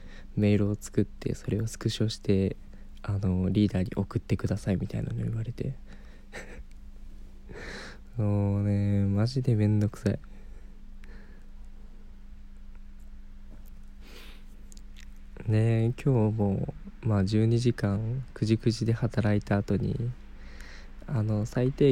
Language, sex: Japanese, male